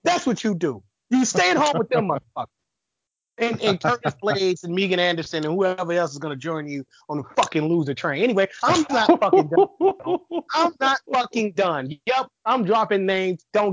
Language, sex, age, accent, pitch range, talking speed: English, male, 30-49, American, 165-245 Hz, 195 wpm